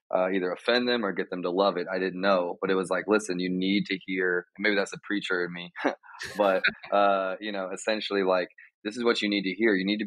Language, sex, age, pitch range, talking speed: English, male, 20-39, 90-100 Hz, 260 wpm